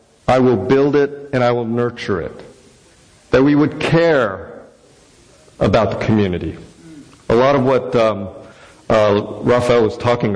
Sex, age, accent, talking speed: male, 50-69, American, 145 wpm